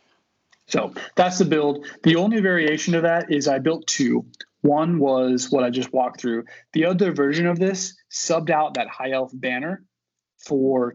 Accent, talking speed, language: American, 175 wpm, English